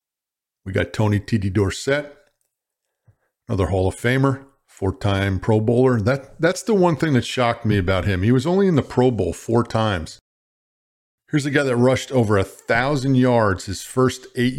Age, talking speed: 50-69, 170 wpm